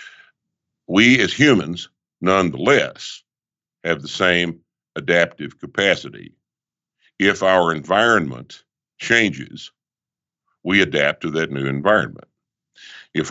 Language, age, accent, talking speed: English, 60-79, American, 90 wpm